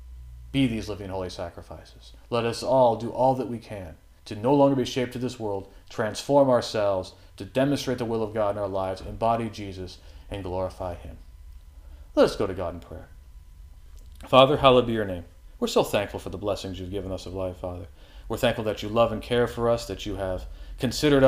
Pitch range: 90-115 Hz